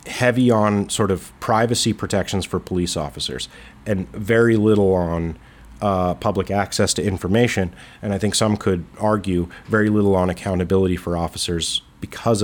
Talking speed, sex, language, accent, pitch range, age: 150 wpm, male, English, American, 85-115 Hz, 30-49